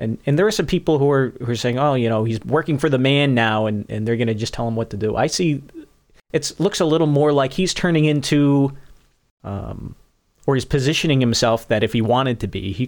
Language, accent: English, American